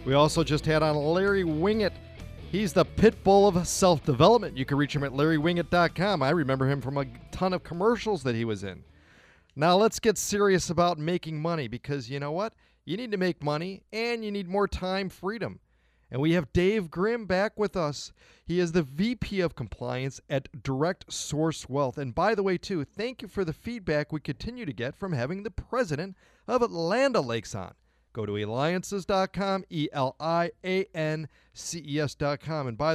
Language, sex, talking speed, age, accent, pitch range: English, male, 180 wpm, 40-59, American, 135-185 Hz